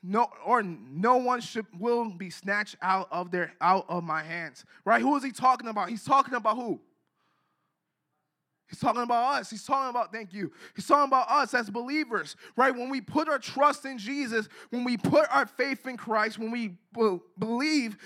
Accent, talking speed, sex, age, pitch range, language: American, 195 wpm, male, 20-39, 220-270 Hz, English